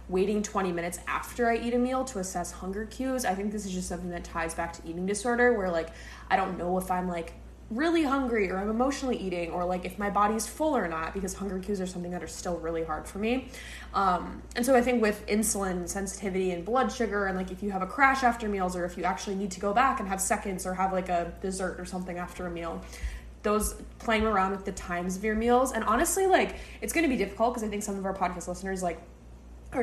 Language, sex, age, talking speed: English, female, 20-39, 255 wpm